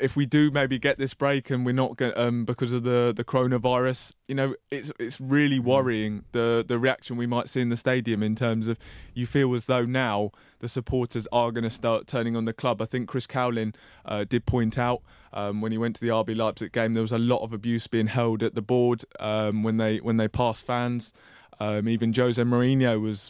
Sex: male